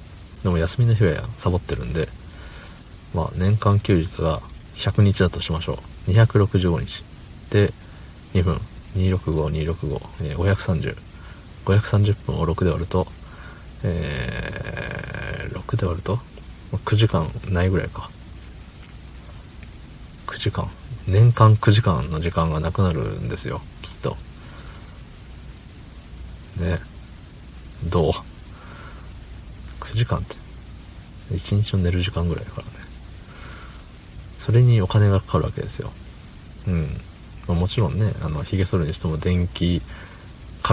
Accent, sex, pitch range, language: native, male, 80-100 Hz, Japanese